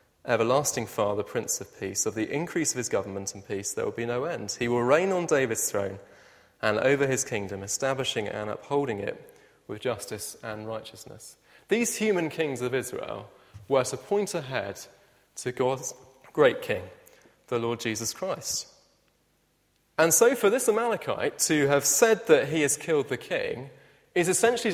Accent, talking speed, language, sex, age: British, 165 wpm, English, male, 30-49